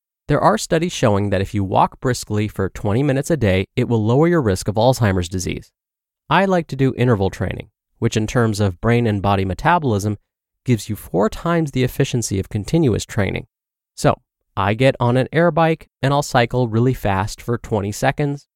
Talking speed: 195 wpm